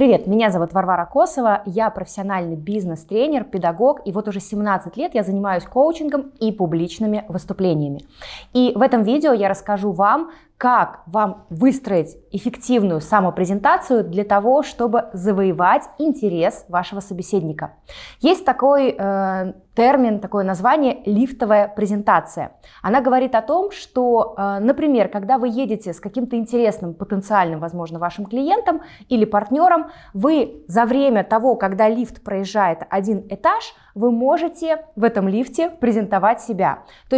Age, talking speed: 20-39, 135 wpm